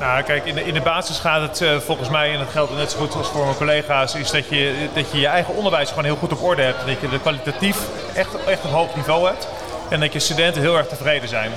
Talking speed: 265 wpm